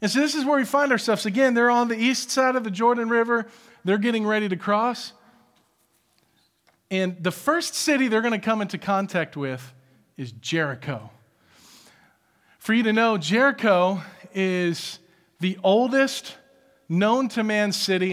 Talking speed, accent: 160 wpm, American